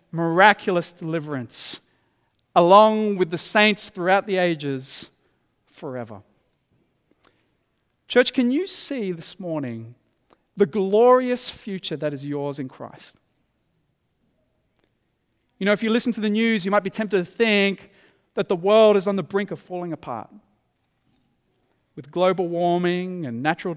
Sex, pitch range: male, 175-240 Hz